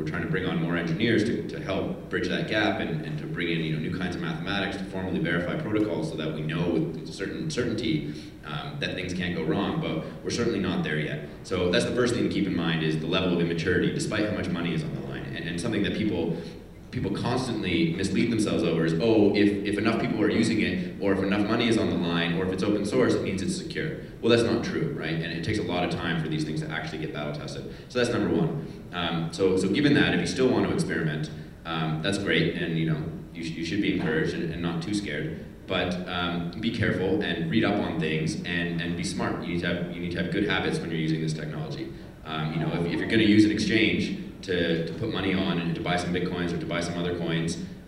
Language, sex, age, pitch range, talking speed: English, male, 30-49, 80-95 Hz, 265 wpm